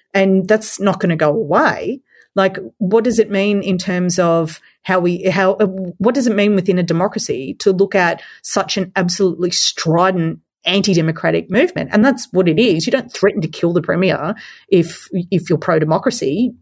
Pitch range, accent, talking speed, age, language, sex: 165-205 Hz, Australian, 180 wpm, 30-49, English, female